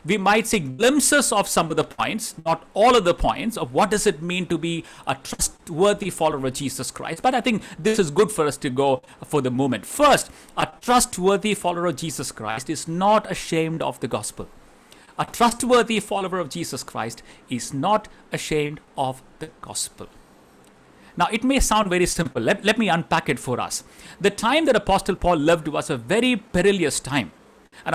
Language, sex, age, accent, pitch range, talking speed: English, male, 50-69, Indian, 155-215 Hz, 195 wpm